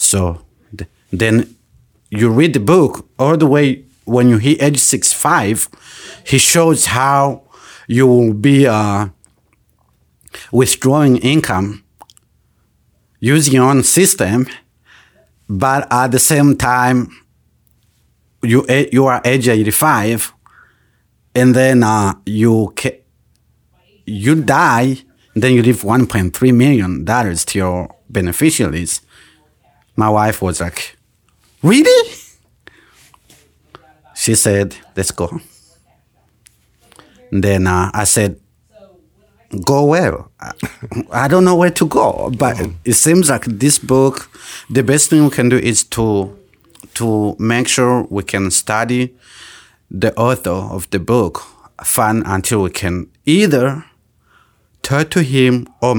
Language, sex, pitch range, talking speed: English, male, 105-135 Hz, 115 wpm